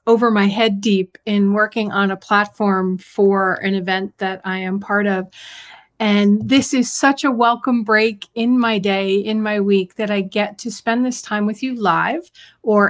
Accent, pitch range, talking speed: American, 200-255 Hz, 190 wpm